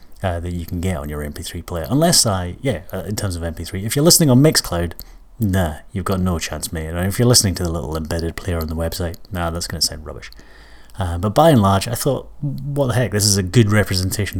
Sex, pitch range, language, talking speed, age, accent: male, 85-115 Hz, English, 245 wpm, 30-49, British